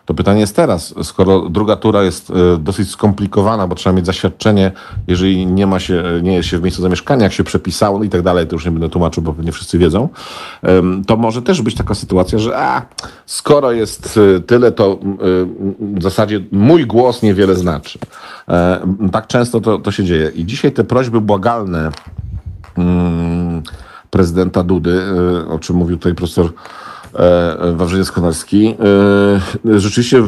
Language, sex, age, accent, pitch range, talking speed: Polish, male, 50-69, native, 90-110 Hz, 145 wpm